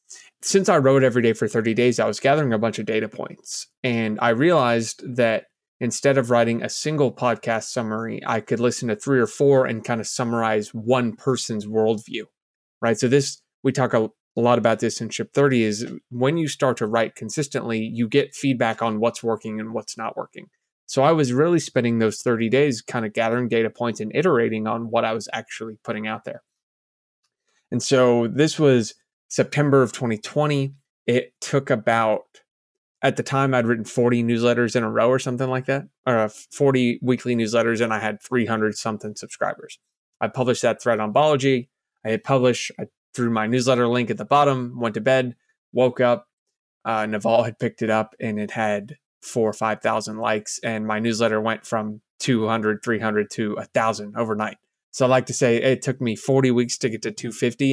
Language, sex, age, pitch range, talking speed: English, male, 20-39, 110-130 Hz, 195 wpm